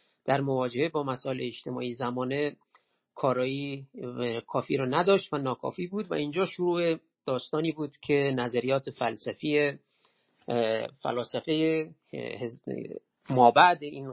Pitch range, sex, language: 130-165 Hz, male, Persian